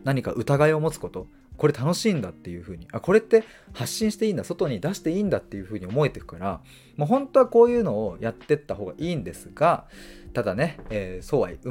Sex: male